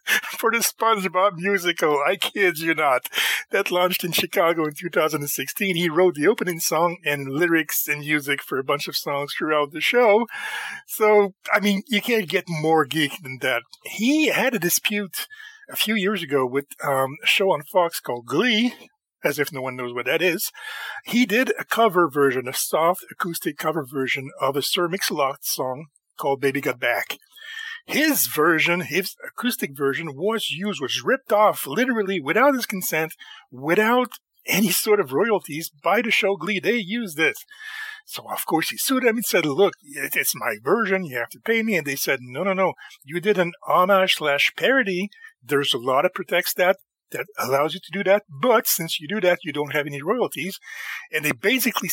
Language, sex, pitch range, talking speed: English, male, 150-215 Hz, 190 wpm